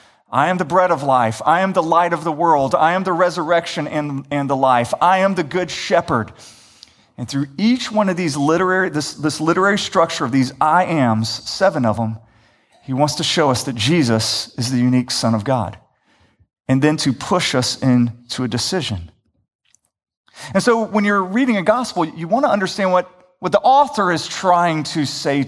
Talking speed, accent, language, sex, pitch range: 200 wpm, American, English, male, 125-175 Hz